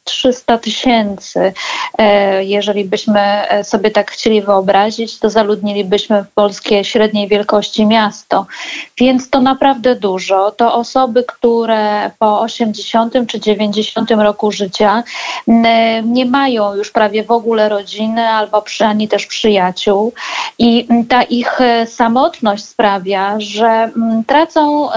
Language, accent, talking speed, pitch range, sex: Polish, native, 110 wpm, 210-250 Hz, female